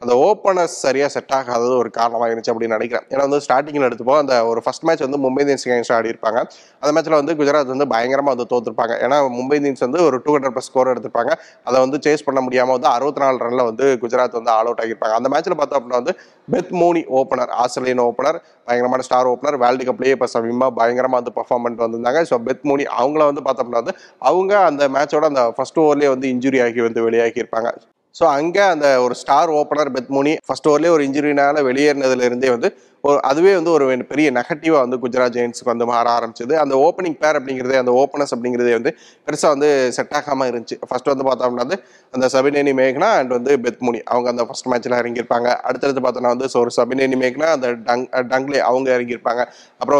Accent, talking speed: native, 195 wpm